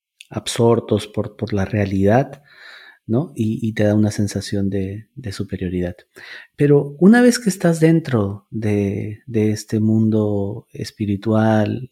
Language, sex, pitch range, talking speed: Spanish, male, 105-135 Hz, 130 wpm